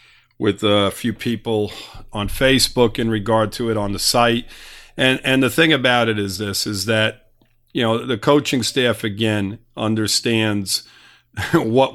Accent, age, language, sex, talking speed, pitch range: American, 50-69, English, male, 155 wpm, 105-120 Hz